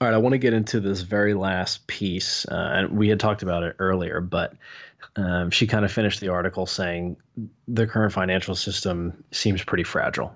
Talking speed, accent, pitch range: 210 wpm, American, 90-105 Hz